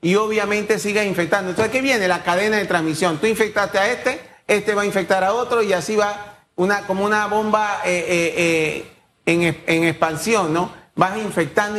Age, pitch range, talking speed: 40-59, 170-210 Hz, 190 wpm